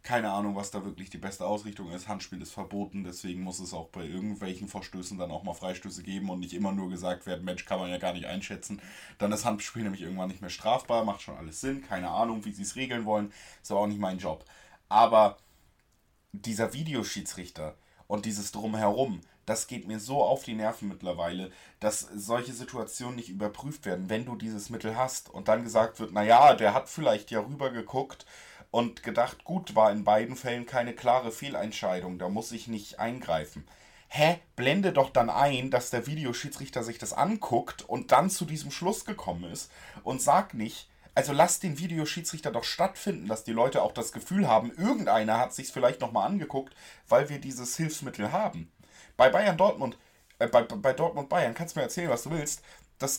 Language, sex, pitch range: German, male, 100-135 Hz